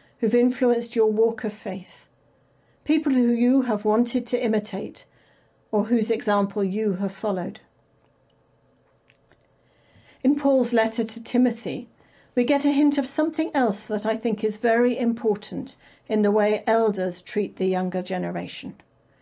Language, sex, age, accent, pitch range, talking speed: English, female, 50-69, British, 200-255 Hz, 140 wpm